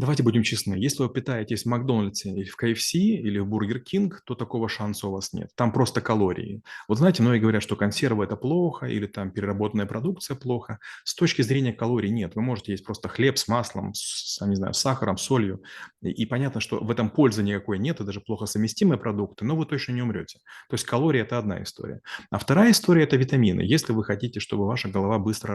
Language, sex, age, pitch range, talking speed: Russian, male, 30-49, 105-130 Hz, 220 wpm